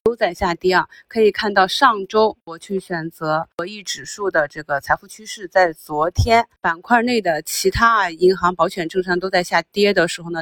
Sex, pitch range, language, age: female, 175-210 Hz, Chinese, 30-49